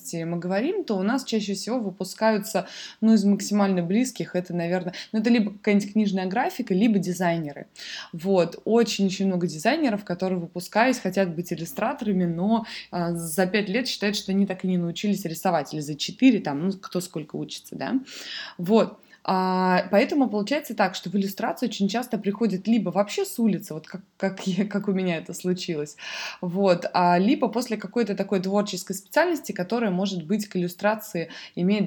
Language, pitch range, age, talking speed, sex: Russian, 185-220 Hz, 20-39, 170 wpm, female